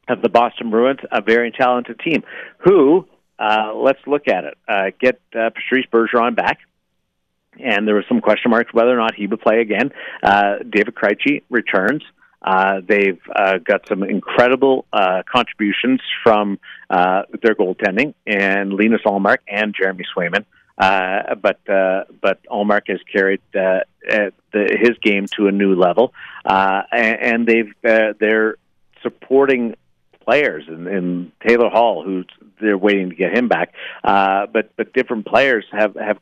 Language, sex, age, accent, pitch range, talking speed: English, male, 50-69, American, 100-120 Hz, 155 wpm